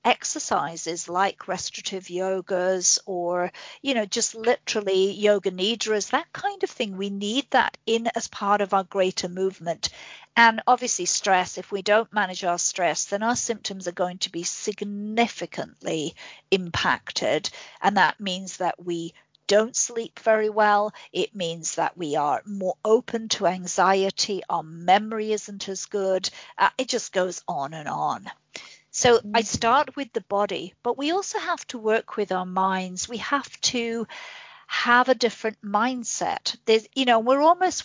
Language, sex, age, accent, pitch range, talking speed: English, female, 50-69, British, 185-230 Hz, 155 wpm